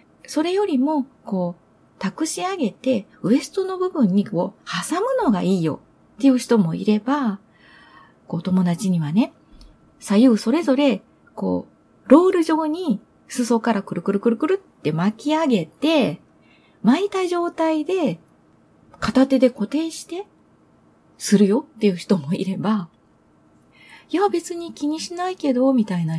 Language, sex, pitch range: Japanese, female, 185-285 Hz